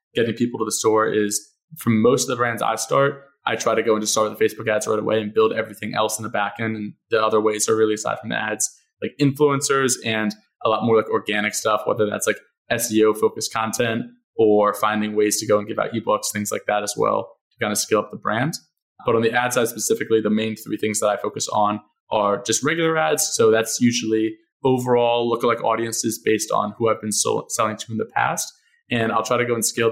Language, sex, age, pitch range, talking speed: English, male, 20-39, 110-120 Hz, 245 wpm